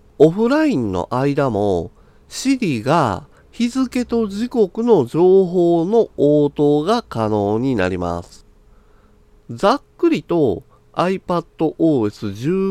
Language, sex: Japanese, male